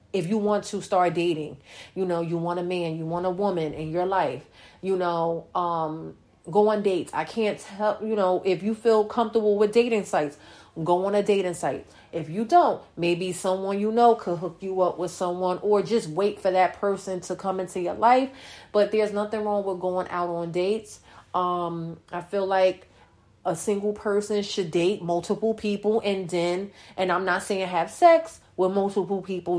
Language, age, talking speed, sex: English, 30-49, 195 wpm, female